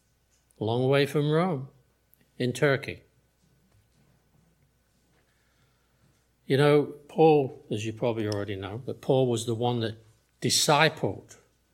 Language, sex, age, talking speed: English, male, 60-79, 110 wpm